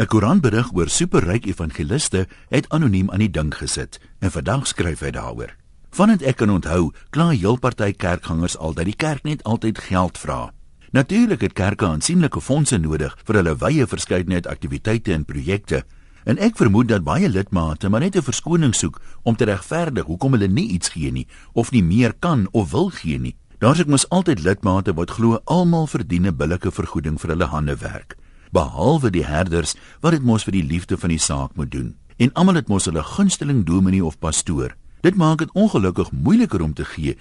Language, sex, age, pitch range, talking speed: English, male, 60-79, 80-125 Hz, 195 wpm